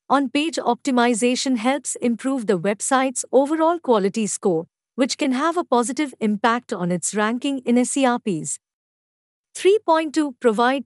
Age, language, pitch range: 50-69, English, 210-270 Hz